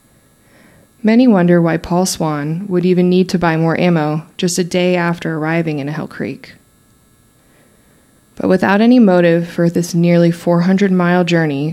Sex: female